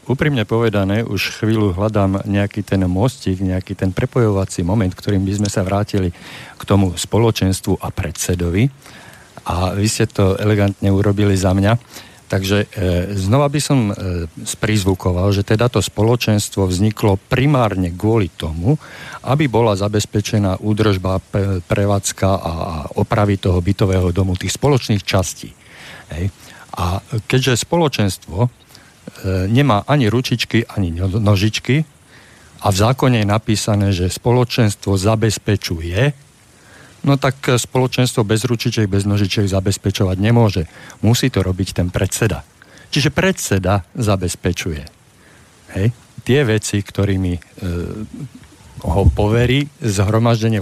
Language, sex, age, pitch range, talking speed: Slovak, male, 50-69, 95-115 Hz, 115 wpm